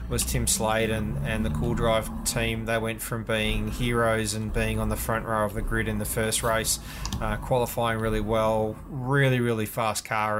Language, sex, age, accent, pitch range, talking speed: English, male, 20-39, Australian, 105-115 Hz, 200 wpm